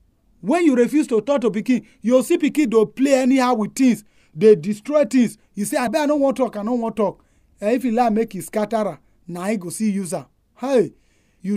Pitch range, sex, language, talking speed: 170-245 Hz, male, English, 240 wpm